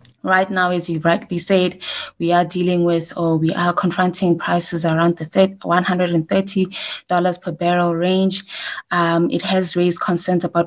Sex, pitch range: female, 170-185 Hz